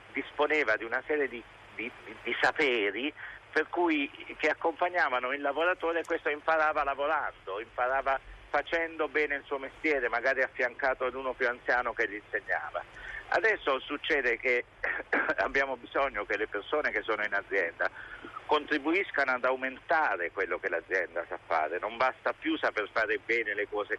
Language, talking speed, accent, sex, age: Italian, 155 wpm, native, male, 50-69